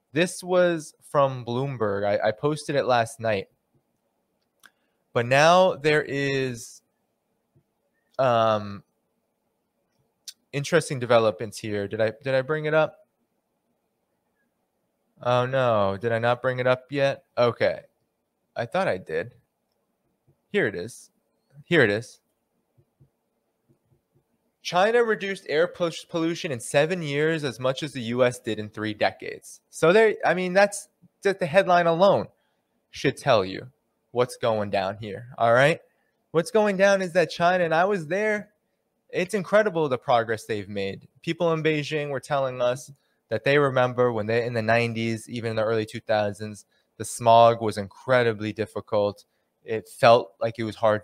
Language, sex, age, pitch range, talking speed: English, male, 20-39, 110-160 Hz, 145 wpm